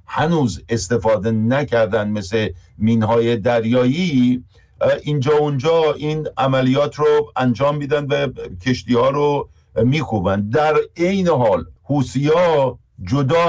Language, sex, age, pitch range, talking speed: Persian, male, 50-69, 100-130 Hz, 100 wpm